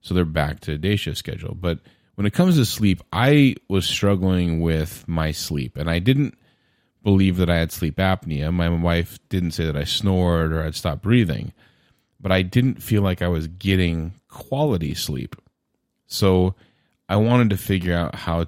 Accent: American